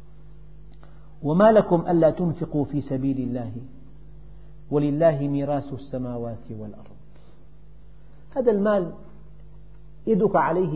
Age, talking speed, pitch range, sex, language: 50-69, 85 wpm, 140-170 Hz, male, Arabic